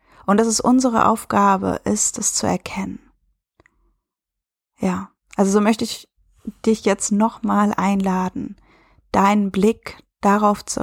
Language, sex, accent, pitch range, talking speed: German, female, German, 195-225 Hz, 125 wpm